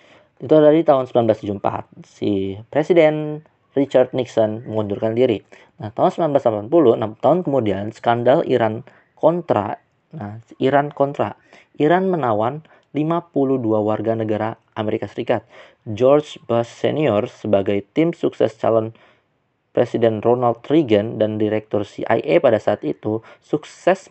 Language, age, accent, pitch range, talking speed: Indonesian, 20-39, native, 110-140 Hz, 115 wpm